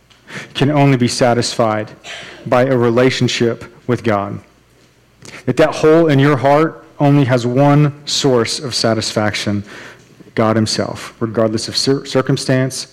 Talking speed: 120 wpm